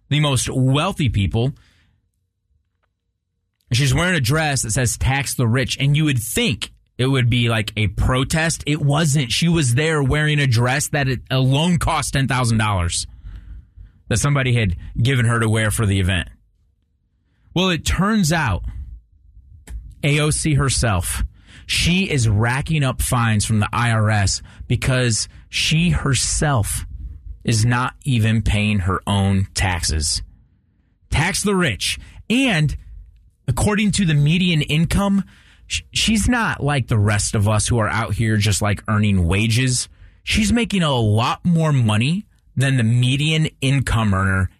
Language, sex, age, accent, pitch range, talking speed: English, male, 30-49, American, 95-140 Hz, 140 wpm